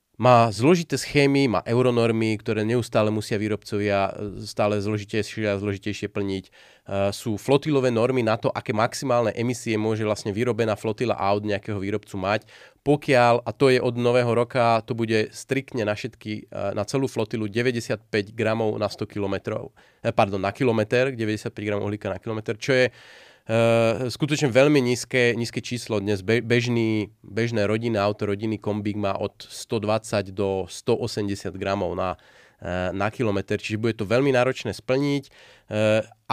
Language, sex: Slovak, male